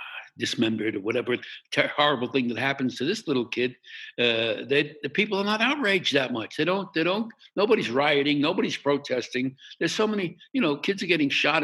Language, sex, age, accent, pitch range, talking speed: English, male, 60-79, American, 120-180 Hz, 190 wpm